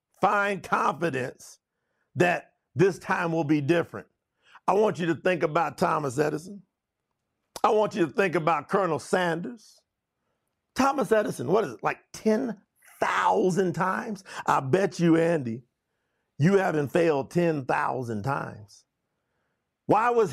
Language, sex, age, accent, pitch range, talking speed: English, male, 50-69, American, 170-225 Hz, 125 wpm